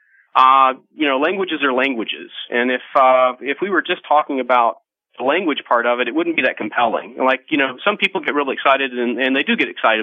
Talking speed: 235 wpm